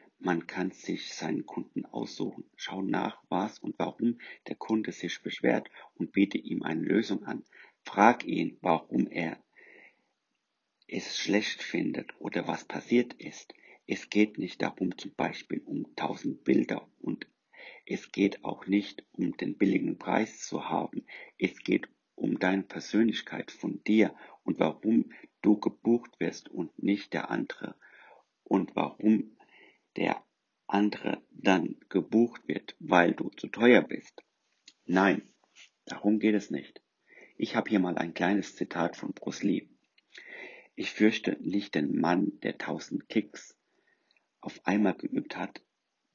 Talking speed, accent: 140 wpm, German